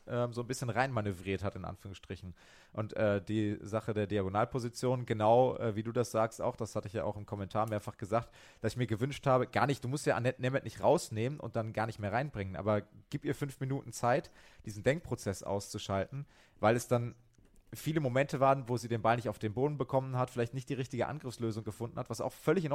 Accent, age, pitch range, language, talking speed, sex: German, 30-49, 110-130 Hz, German, 225 wpm, male